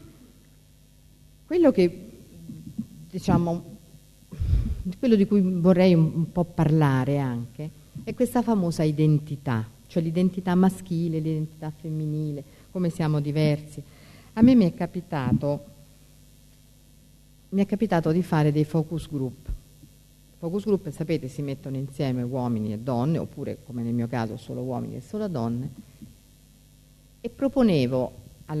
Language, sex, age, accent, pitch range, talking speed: Italian, female, 50-69, native, 120-170 Hz, 115 wpm